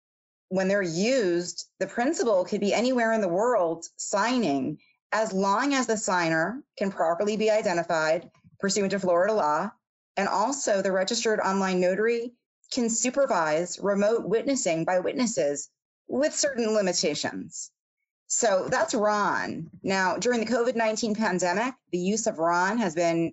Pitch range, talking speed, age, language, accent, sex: 175-225 Hz, 140 wpm, 30-49, English, American, female